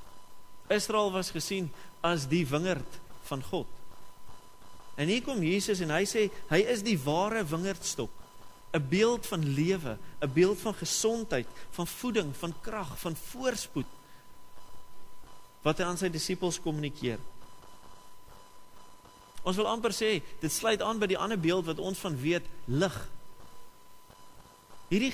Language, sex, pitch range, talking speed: English, male, 125-195 Hz, 135 wpm